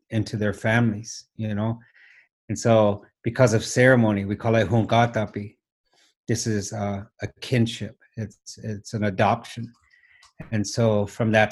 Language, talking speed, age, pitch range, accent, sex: English, 140 wpm, 30-49, 100-115 Hz, American, male